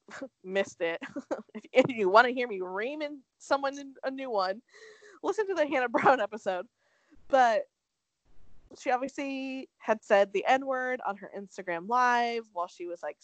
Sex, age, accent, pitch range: female, 20-39, American, 195-305 Hz